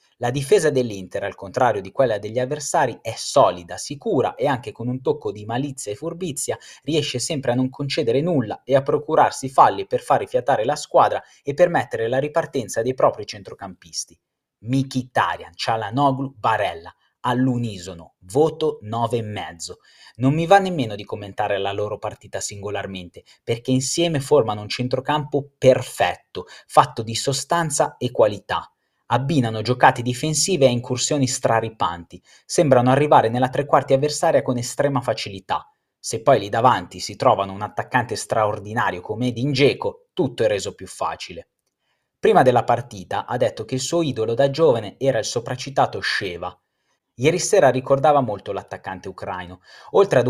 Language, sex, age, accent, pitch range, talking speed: Italian, male, 20-39, native, 115-150 Hz, 145 wpm